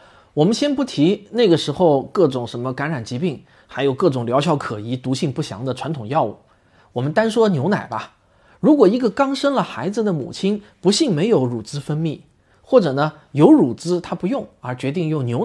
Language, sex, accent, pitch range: Chinese, male, native, 120-180 Hz